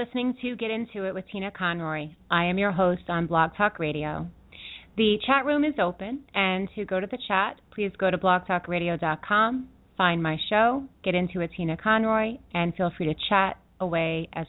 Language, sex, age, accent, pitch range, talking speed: English, female, 30-49, American, 175-220 Hz, 195 wpm